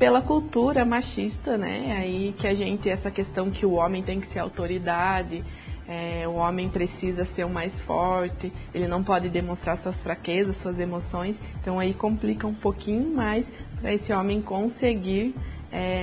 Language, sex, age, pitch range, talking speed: Portuguese, female, 20-39, 180-220 Hz, 165 wpm